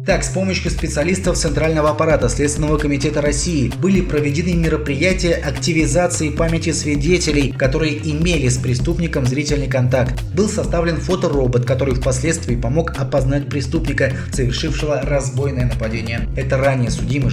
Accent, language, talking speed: native, Russian, 120 wpm